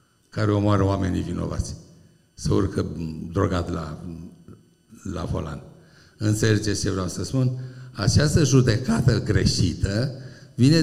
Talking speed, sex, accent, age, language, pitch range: 105 wpm, male, native, 60-79, Romanian, 110-155 Hz